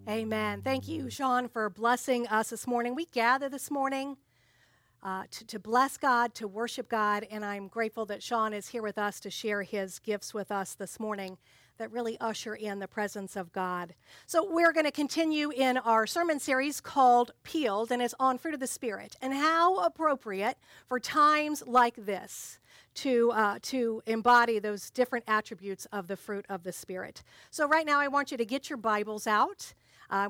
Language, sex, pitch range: English, female, 205-260 Hz